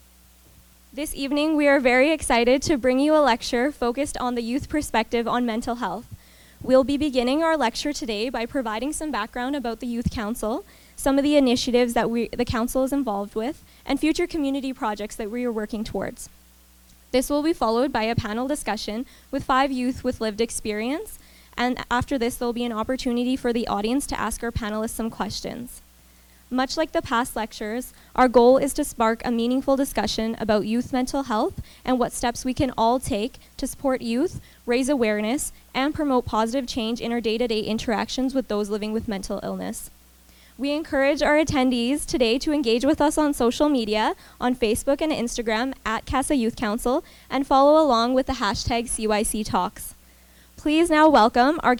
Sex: female